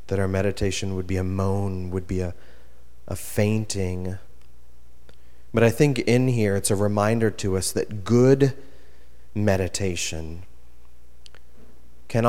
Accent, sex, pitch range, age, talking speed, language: American, male, 65-110 Hz, 30-49, 125 wpm, English